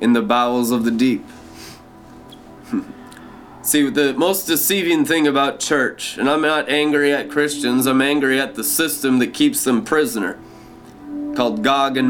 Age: 20-39